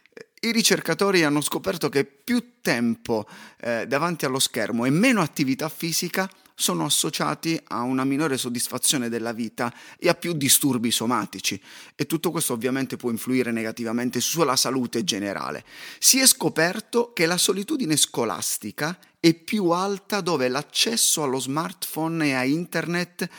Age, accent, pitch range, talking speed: 30-49, native, 130-195 Hz, 140 wpm